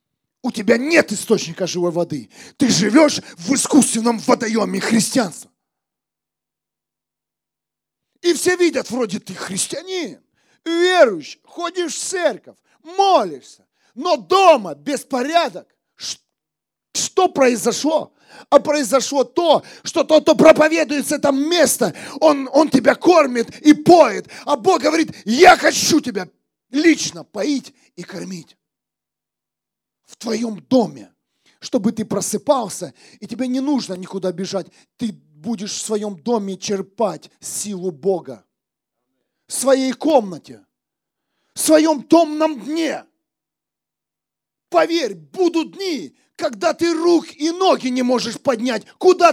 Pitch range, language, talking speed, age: 220-315 Hz, Russian, 110 wpm, 40-59